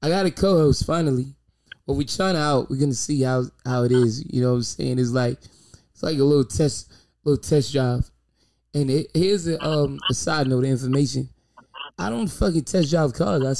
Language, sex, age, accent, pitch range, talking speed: English, male, 20-39, American, 130-175 Hz, 205 wpm